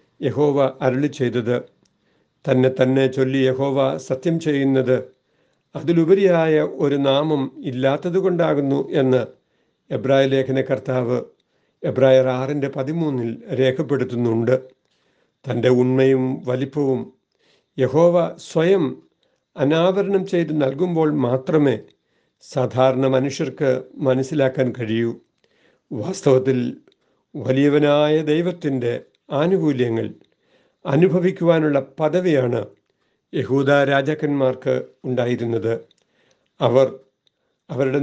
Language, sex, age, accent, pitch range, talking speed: Malayalam, male, 60-79, native, 130-155 Hz, 70 wpm